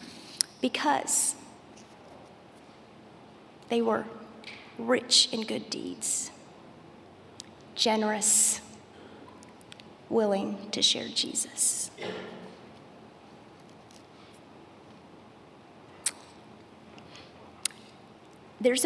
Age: 40-59